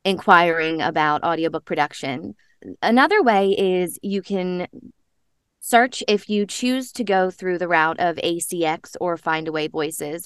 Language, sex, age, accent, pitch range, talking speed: English, female, 20-39, American, 170-230 Hz, 135 wpm